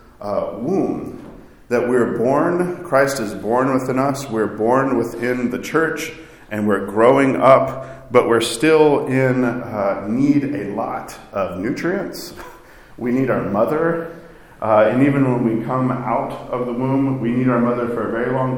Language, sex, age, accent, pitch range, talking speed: English, male, 40-59, American, 110-130 Hz, 165 wpm